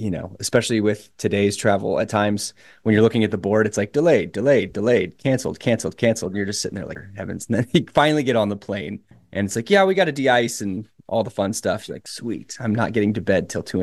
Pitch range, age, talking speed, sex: 100-115 Hz, 20-39, 260 wpm, male